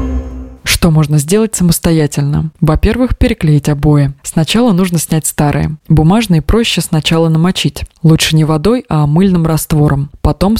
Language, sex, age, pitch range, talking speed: Russian, female, 20-39, 150-180 Hz, 120 wpm